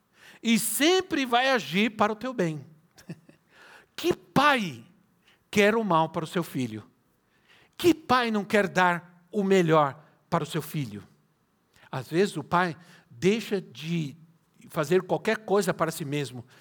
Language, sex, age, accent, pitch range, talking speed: Portuguese, male, 60-79, Brazilian, 170-220 Hz, 145 wpm